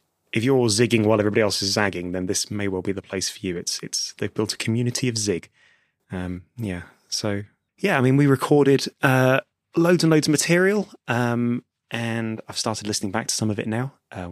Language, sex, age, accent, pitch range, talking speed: English, male, 20-39, British, 95-120 Hz, 215 wpm